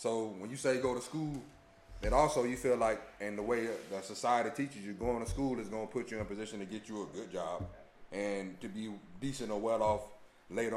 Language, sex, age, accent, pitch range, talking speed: English, male, 30-49, American, 110-150 Hz, 245 wpm